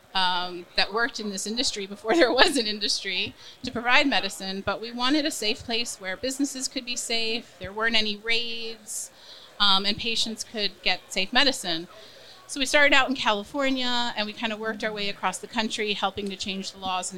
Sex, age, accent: female, 30-49, American